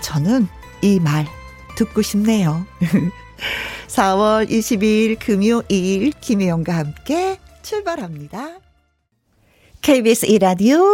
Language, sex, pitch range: Korean, female, 175-260 Hz